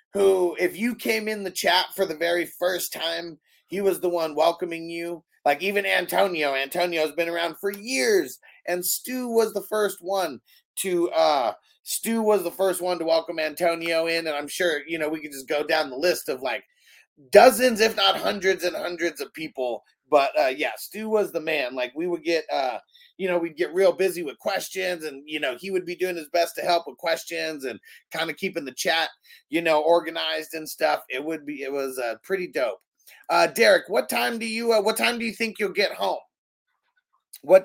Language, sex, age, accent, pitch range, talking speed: English, male, 30-49, American, 145-195 Hz, 210 wpm